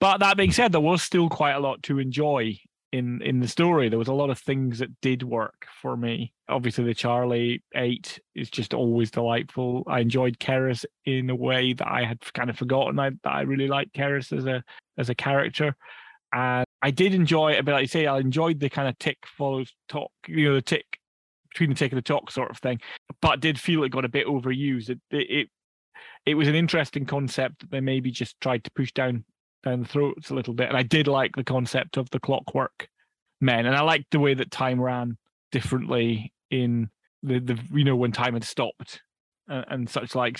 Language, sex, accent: English, male, British